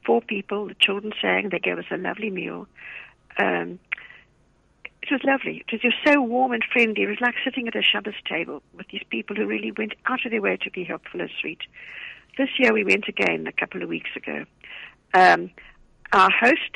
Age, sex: 60-79, female